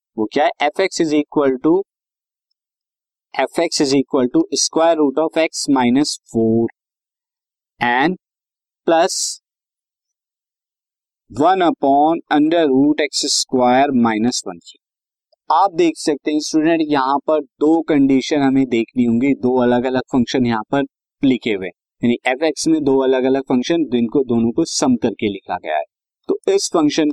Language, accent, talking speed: Hindi, native, 145 wpm